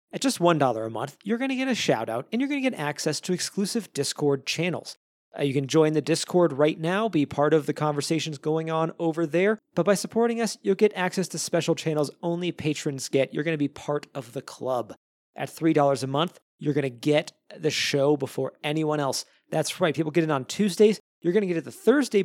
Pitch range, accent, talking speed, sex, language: 145-185 Hz, American, 230 wpm, male, English